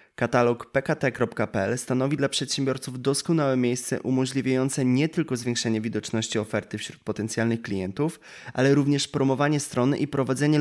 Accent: native